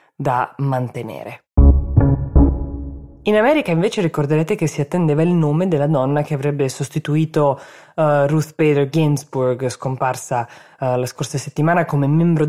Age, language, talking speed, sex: 20-39, Italian, 120 wpm, female